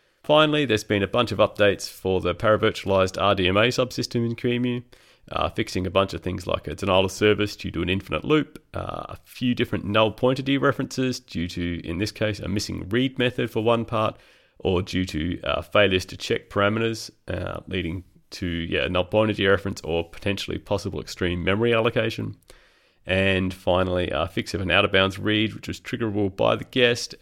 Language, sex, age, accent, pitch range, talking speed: English, male, 30-49, Australian, 90-115 Hz, 185 wpm